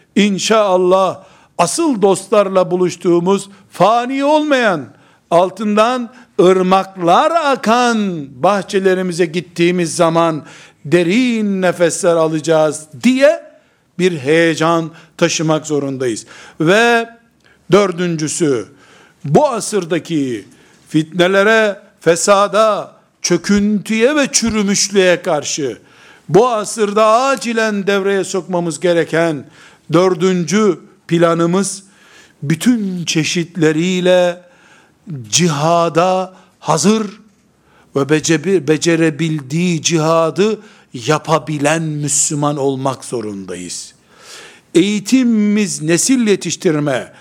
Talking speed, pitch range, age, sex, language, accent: 65 wpm, 165-205 Hz, 60-79, male, Turkish, native